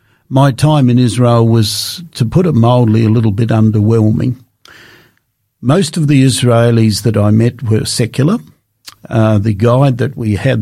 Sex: male